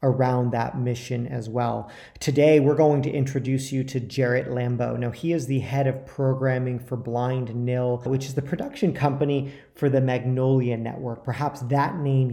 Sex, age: male, 40-59